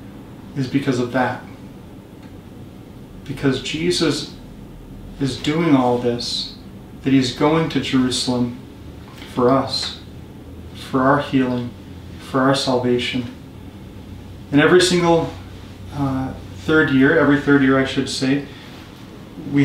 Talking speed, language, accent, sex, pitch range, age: 110 wpm, English, American, male, 120-140 Hz, 30-49